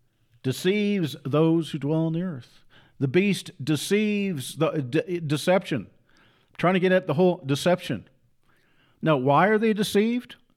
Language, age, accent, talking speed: English, 50-69, American, 150 wpm